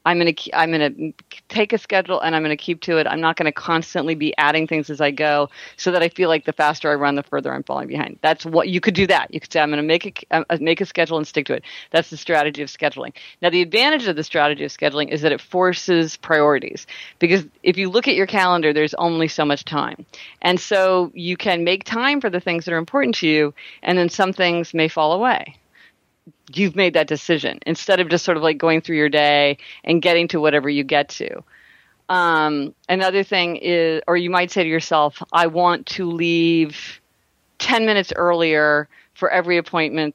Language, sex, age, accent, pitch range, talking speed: English, female, 40-59, American, 150-180 Hz, 230 wpm